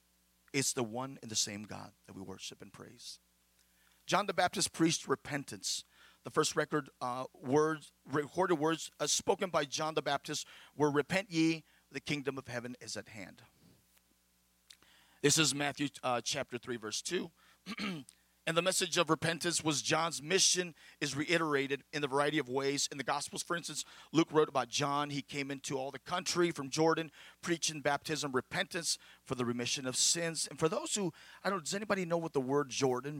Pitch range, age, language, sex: 105-150 Hz, 40-59, English, male